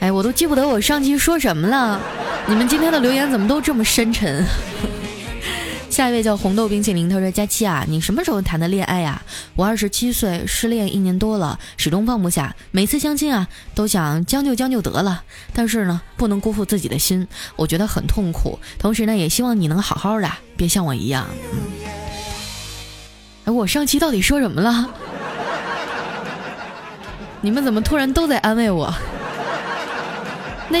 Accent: native